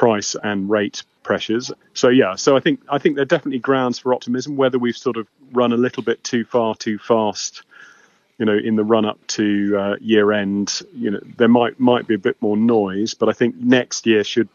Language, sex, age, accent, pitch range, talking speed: English, male, 30-49, British, 100-115 Hz, 225 wpm